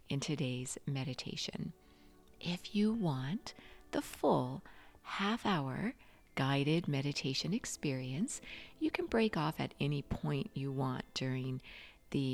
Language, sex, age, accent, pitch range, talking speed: English, female, 50-69, American, 130-190 Hz, 115 wpm